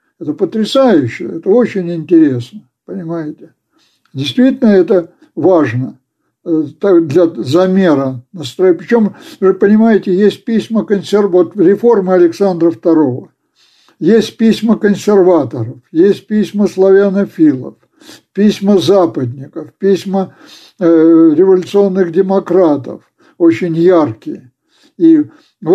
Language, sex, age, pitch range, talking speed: Russian, male, 60-79, 165-210 Hz, 85 wpm